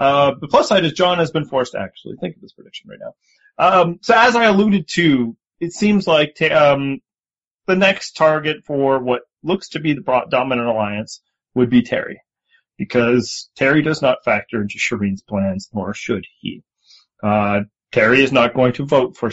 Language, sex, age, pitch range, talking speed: English, male, 30-49, 115-170 Hz, 190 wpm